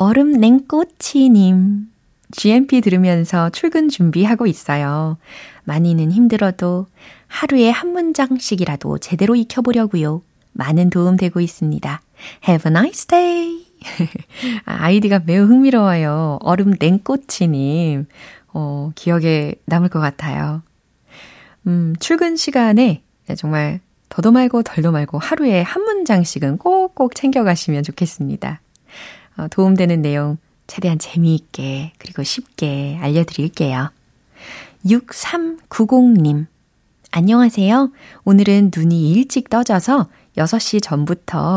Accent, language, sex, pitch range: native, Korean, female, 160-240 Hz